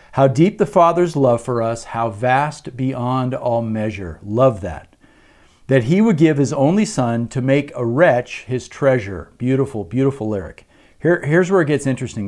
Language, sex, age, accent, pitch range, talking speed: English, male, 50-69, American, 115-150 Hz, 170 wpm